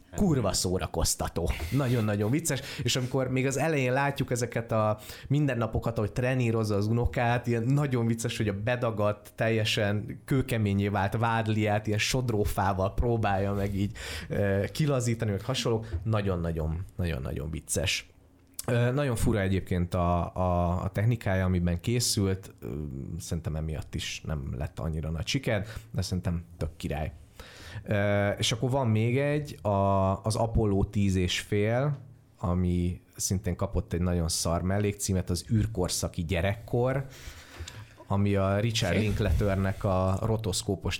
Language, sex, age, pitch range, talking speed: Hungarian, male, 30-49, 90-115 Hz, 125 wpm